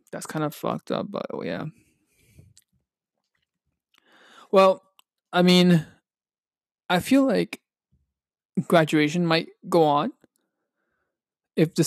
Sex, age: male, 20-39